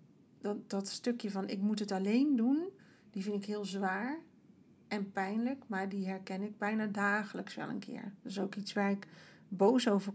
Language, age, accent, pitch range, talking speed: Dutch, 40-59, Dutch, 200-240 Hz, 195 wpm